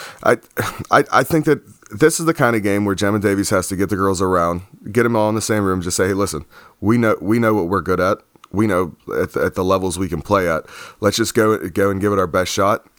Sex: male